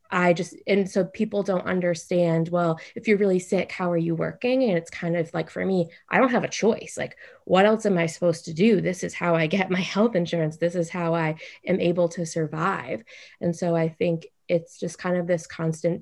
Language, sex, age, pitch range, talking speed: English, female, 20-39, 165-185 Hz, 230 wpm